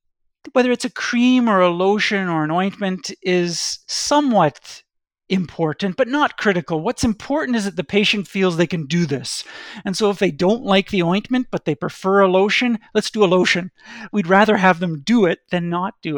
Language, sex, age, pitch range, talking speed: English, male, 50-69, 165-210 Hz, 195 wpm